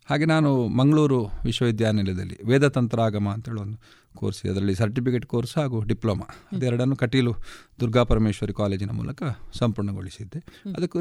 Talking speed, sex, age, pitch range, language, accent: 115 wpm, male, 40-59, 110-145 Hz, Kannada, native